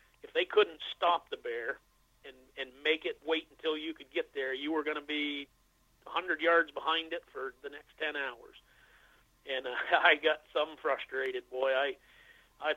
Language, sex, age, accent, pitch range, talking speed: English, male, 40-59, American, 140-165 Hz, 185 wpm